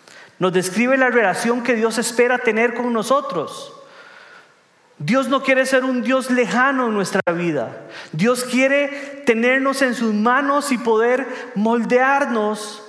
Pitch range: 170-255 Hz